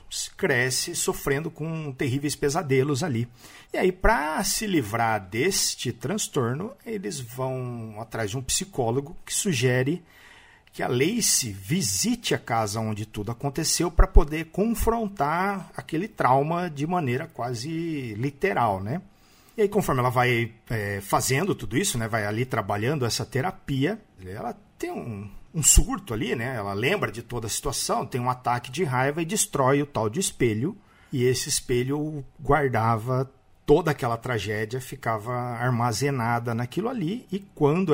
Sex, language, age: male, Portuguese, 50-69